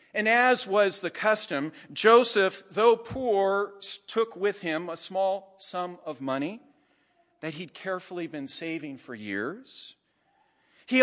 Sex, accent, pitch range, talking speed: male, American, 145-230 Hz, 130 wpm